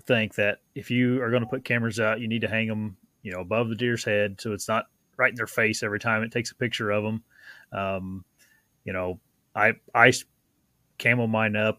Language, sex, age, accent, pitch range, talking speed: English, male, 30-49, American, 100-120 Hz, 225 wpm